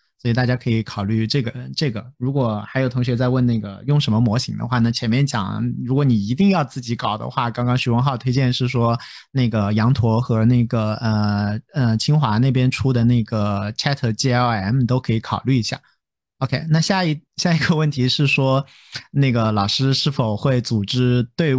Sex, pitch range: male, 115-150 Hz